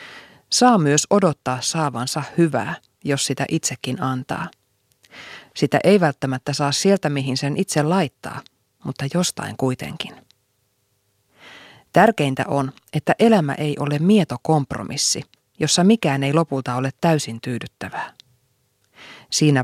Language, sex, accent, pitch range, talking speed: Finnish, female, native, 130-165 Hz, 110 wpm